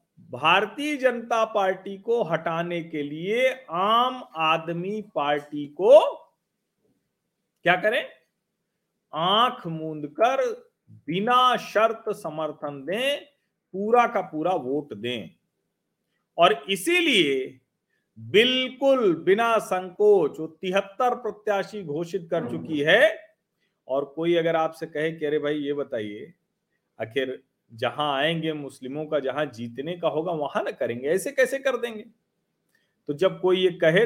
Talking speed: 115 wpm